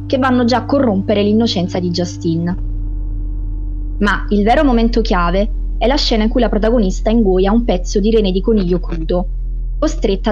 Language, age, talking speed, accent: Italian, 20-39, 170 wpm, native